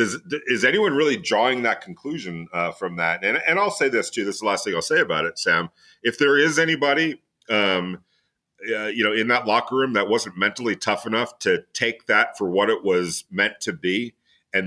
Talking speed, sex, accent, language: 220 wpm, male, American, English